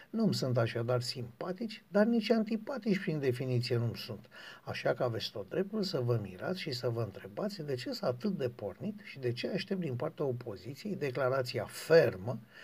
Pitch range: 125-190 Hz